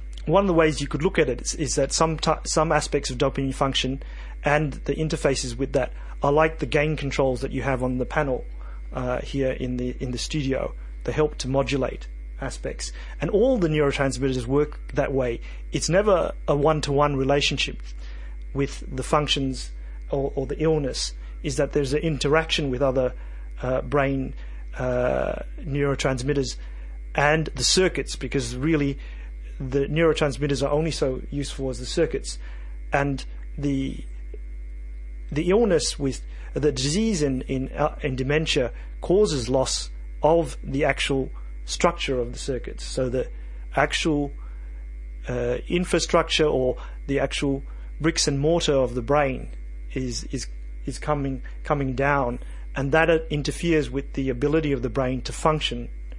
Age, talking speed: 40-59, 155 wpm